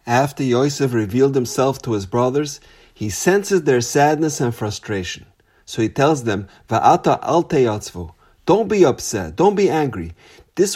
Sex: male